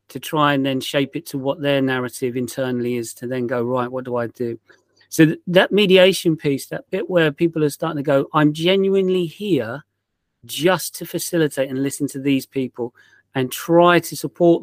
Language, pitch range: English, 135-170 Hz